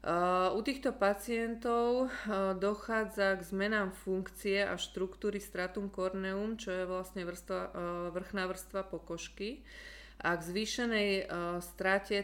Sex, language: female, Slovak